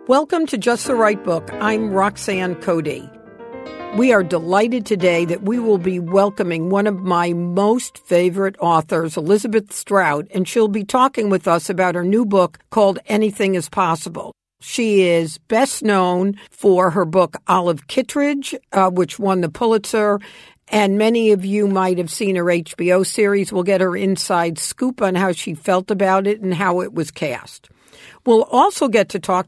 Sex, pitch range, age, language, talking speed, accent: female, 180-225 Hz, 50-69, English, 175 wpm, American